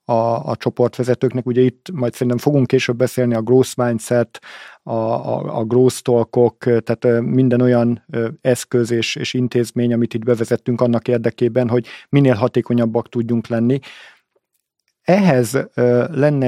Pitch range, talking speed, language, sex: 115-130 Hz, 125 wpm, Hungarian, male